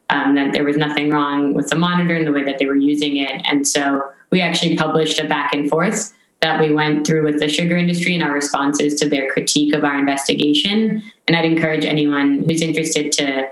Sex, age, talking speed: female, 20-39, 220 wpm